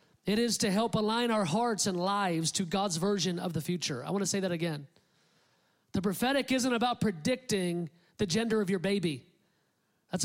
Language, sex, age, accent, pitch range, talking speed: English, male, 40-59, American, 190-250 Hz, 185 wpm